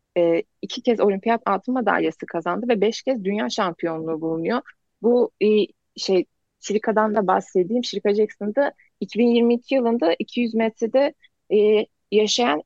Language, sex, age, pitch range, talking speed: Turkish, female, 30-49, 185-240 Hz, 115 wpm